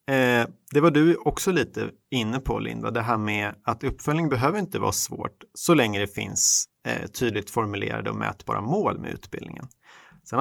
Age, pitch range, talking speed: 30-49, 100-125 Hz, 165 wpm